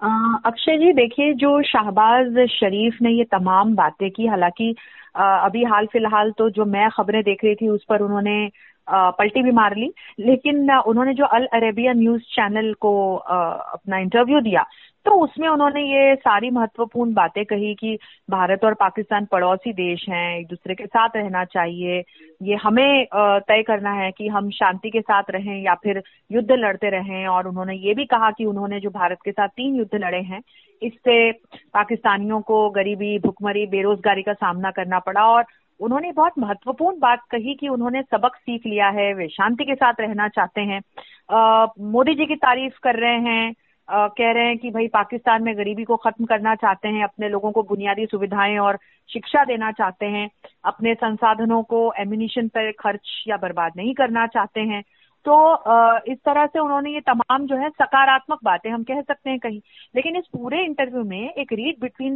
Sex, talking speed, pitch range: female, 180 wpm, 205-250 Hz